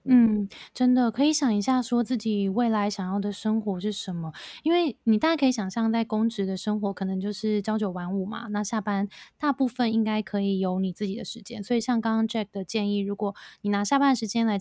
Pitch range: 195-230 Hz